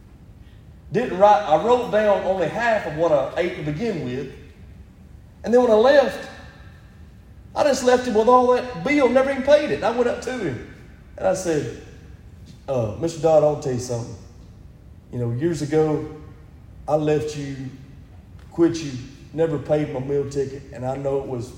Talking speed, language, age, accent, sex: 185 wpm, English, 40-59, American, male